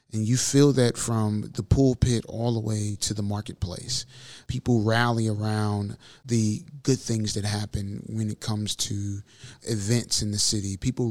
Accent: American